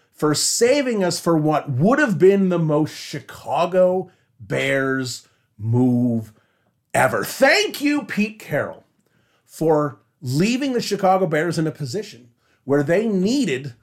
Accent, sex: American, male